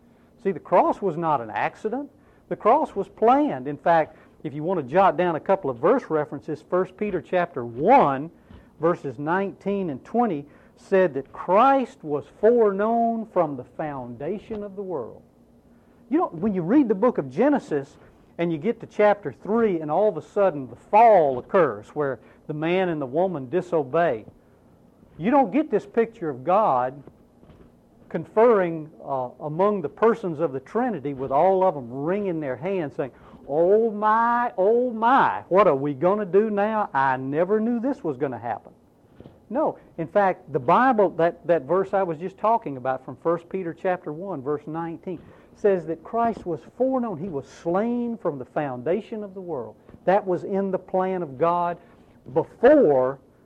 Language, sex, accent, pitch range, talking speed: English, male, American, 150-210 Hz, 175 wpm